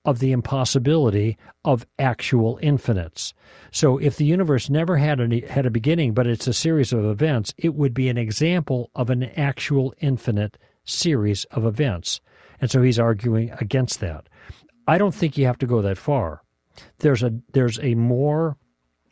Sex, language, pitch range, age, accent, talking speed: male, English, 110-145 Hz, 50-69, American, 170 wpm